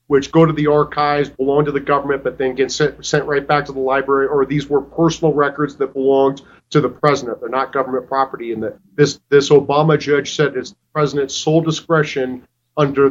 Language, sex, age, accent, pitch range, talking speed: English, male, 40-59, American, 140-165 Hz, 210 wpm